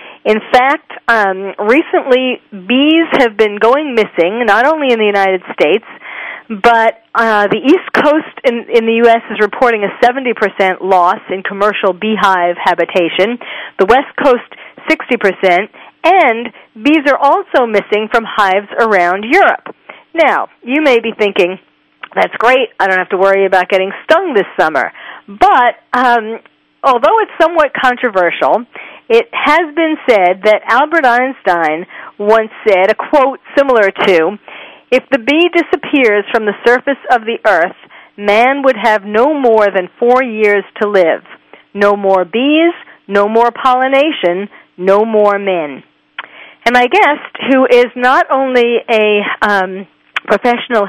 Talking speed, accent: 145 wpm, American